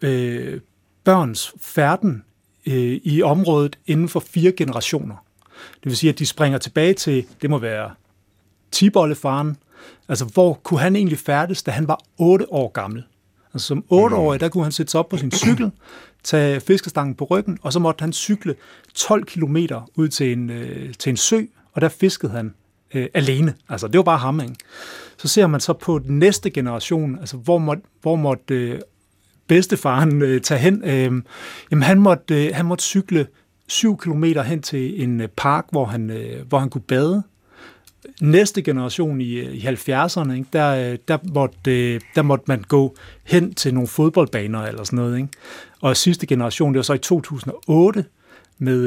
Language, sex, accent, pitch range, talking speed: Danish, male, native, 125-170 Hz, 180 wpm